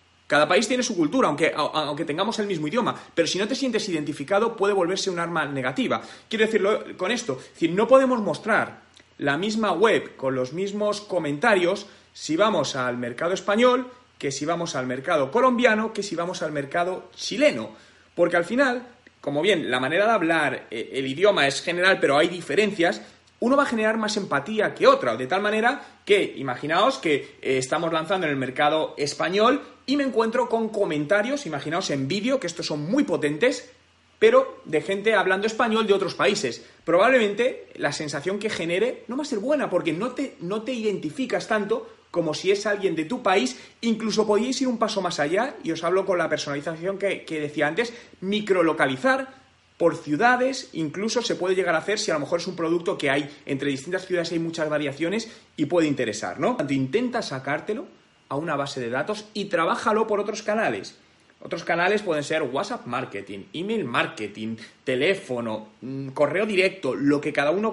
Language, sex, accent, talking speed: Spanish, male, Spanish, 185 wpm